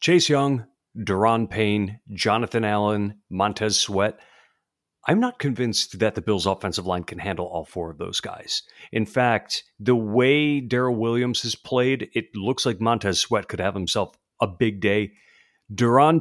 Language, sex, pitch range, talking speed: English, male, 105-130 Hz, 160 wpm